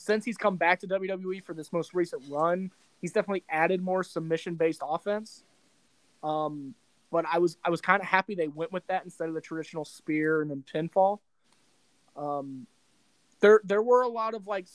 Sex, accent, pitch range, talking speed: male, American, 155-190 Hz, 185 wpm